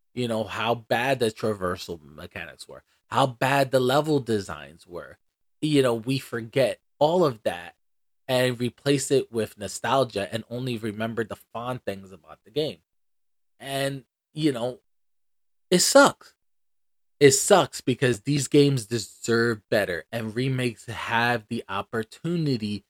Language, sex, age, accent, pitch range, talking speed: English, male, 20-39, American, 105-130 Hz, 135 wpm